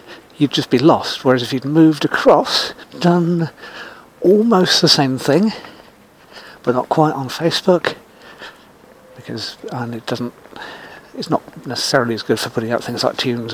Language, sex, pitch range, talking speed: English, male, 120-145 Hz, 145 wpm